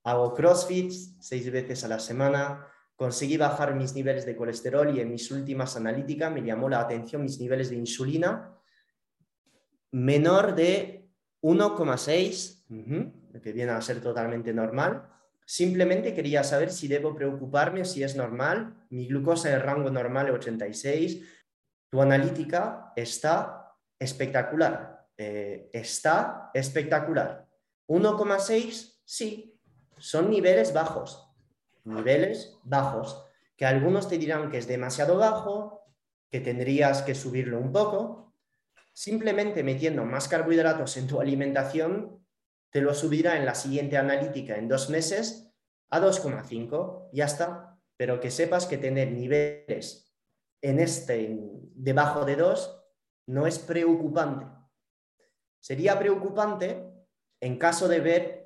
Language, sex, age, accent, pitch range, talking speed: Spanish, male, 20-39, Spanish, 130-175 Hz, 125 wpm